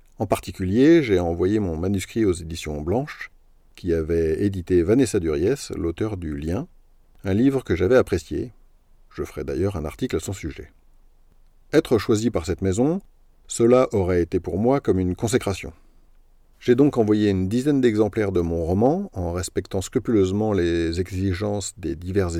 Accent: French